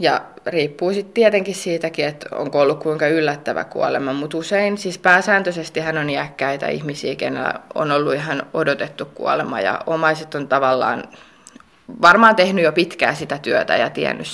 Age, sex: 20-39, female